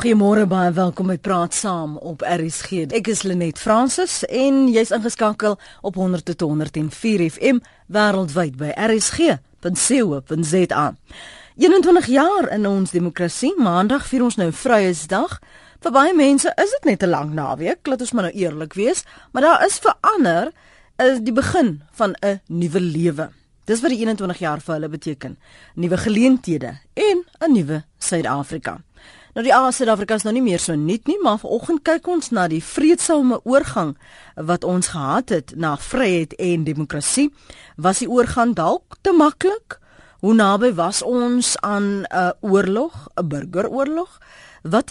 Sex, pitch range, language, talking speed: female, 170-250 Hz, English, 155 wpm